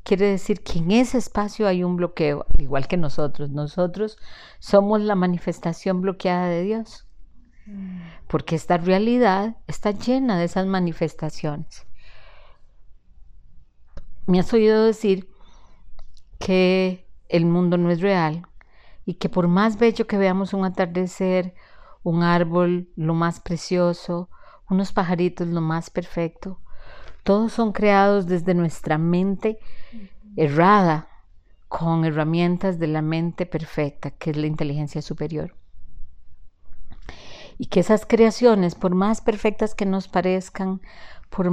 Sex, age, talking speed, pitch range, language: female, 40-59, 125 wpm, 155-195 Hz, Spanish